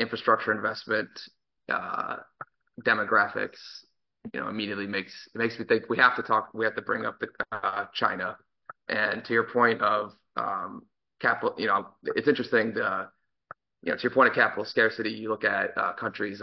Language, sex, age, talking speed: English, male, 20-39, 185 wpm